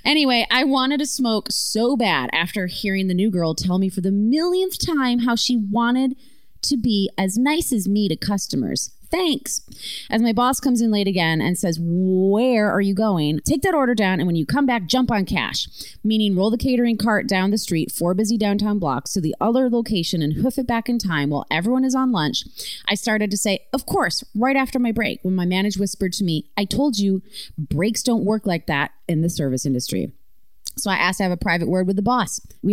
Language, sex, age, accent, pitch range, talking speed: English, female, 30-49, American, 185-245 Hz, 225 wpm